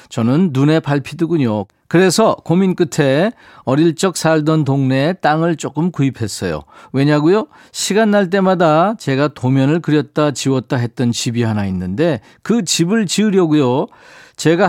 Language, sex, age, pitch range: Korean, male, 40-59, 135-180 Hz